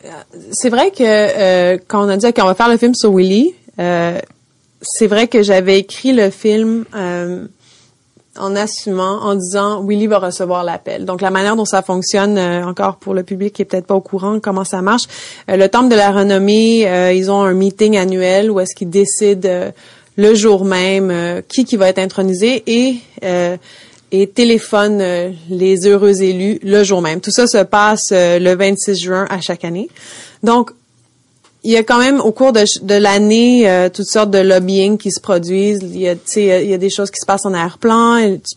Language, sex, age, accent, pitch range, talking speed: English, female, 30-49, Canadian, 185-215 Hz, 210 wpm